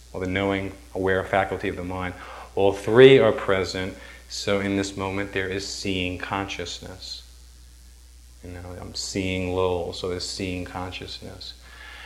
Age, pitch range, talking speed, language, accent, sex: 40-59, 90-100 Hz, 140 wpm, English, American, male